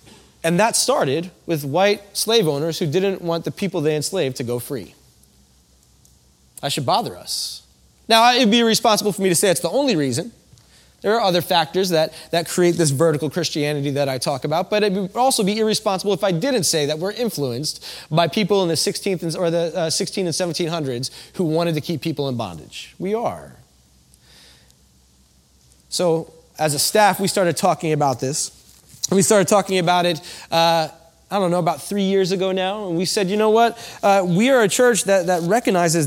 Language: English